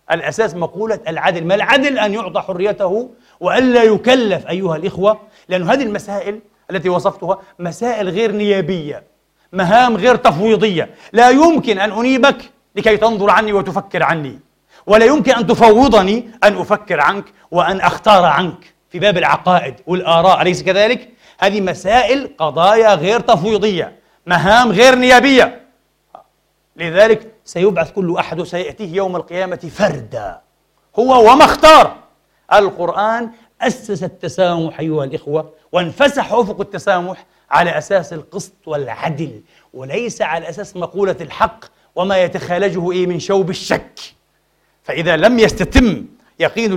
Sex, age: male, 40-59